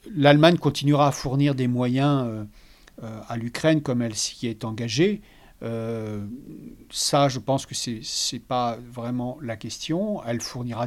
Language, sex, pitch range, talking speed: French, male, 120-145 Hz, 155 wpm